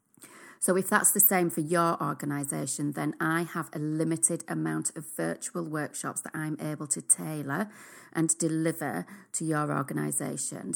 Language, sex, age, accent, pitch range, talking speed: English, female, 40-59, British, 145-170 Hz, 150 wpm